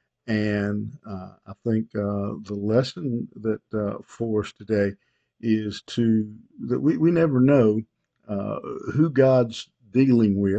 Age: 50-69